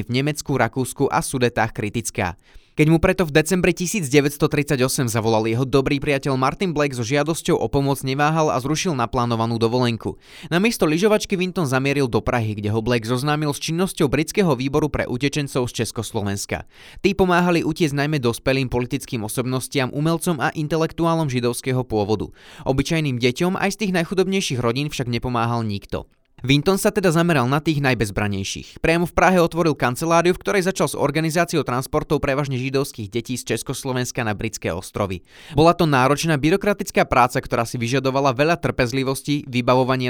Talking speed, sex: 155 wpm, male